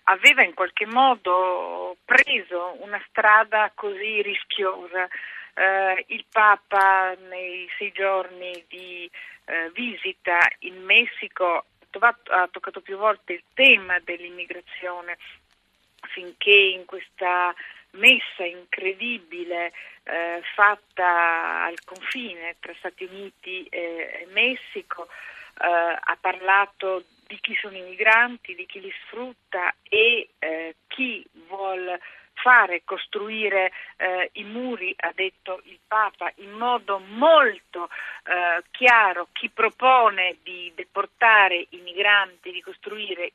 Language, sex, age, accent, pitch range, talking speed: Italian, female, 40-59, native, 175-215 Hz, 110 wpm